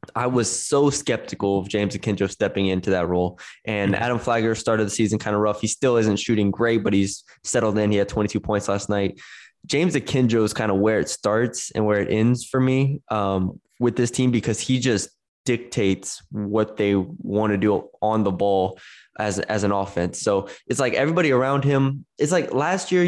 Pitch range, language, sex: 100-120 Hz, English, male